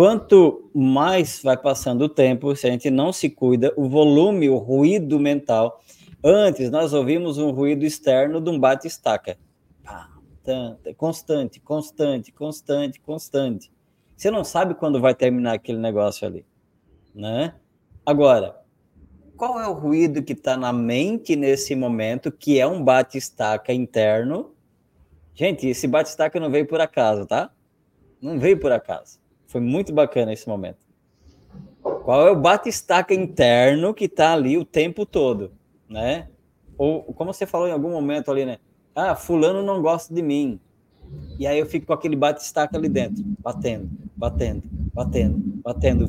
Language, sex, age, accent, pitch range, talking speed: Portuguese, male, 20-39, Brazilian, 125-165 Hz, 150 wpm